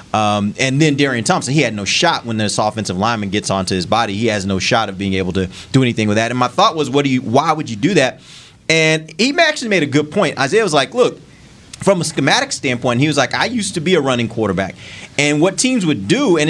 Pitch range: 115-160 Hz